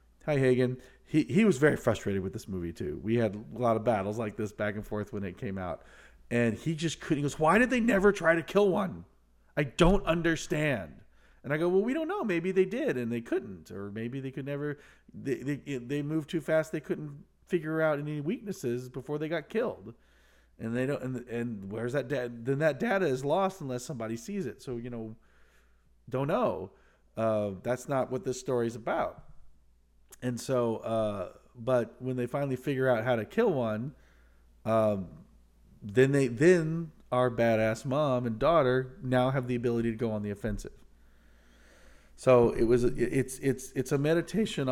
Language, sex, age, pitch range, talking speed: English, male, 40-59, 110-145 Hz, 195 wpm